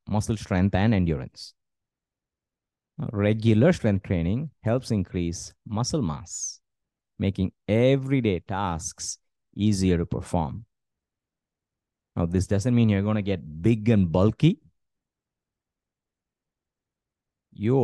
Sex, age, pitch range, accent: male, 30-49, 90-115 Hz, Indian